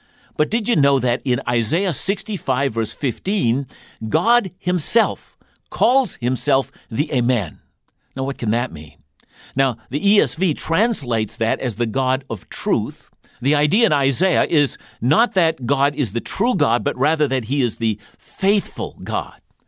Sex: male